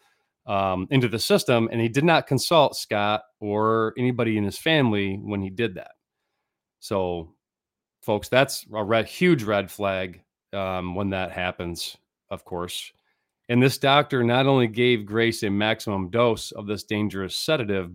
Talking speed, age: 155 wpm, 40-59